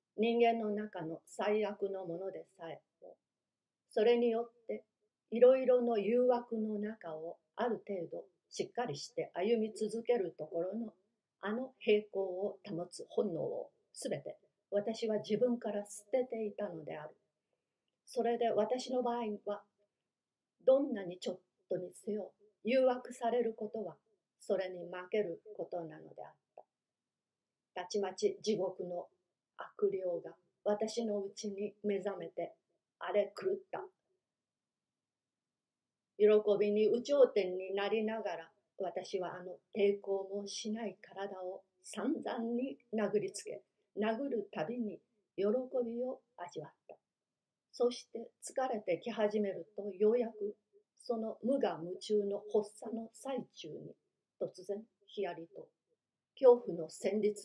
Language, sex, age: Japanese, female, 40-59